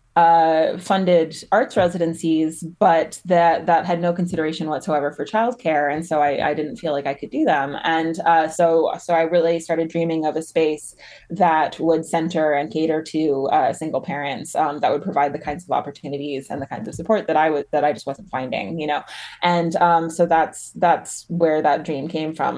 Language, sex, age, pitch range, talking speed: English, female, 20-39, 150-175 Hz, 205 wpm